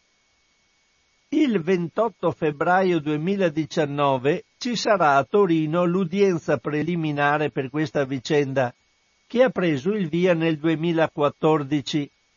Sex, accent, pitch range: male, native, 150-180 Hz